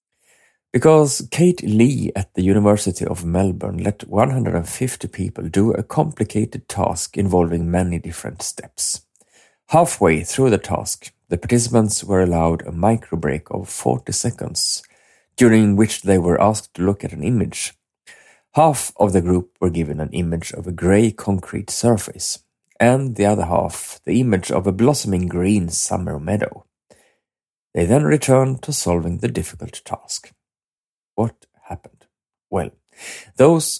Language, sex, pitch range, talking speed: English, male, 90-120 Hz, 140 wpm